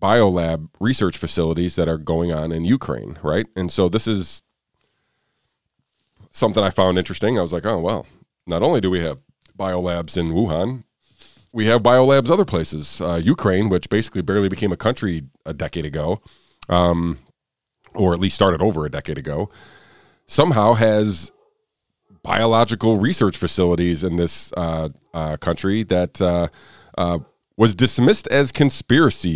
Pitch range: 80-110 Hz